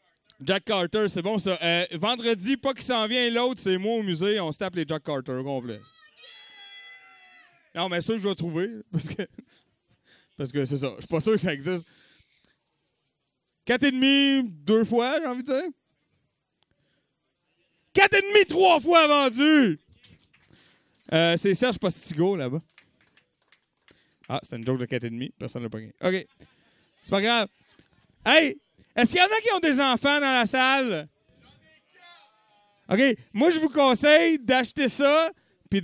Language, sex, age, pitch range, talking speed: French, male, 30-49, 165-265 Hz, 170 wpm